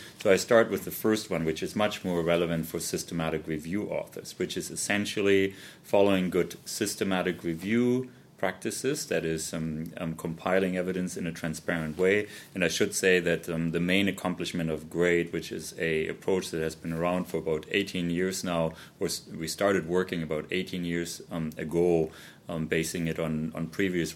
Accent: German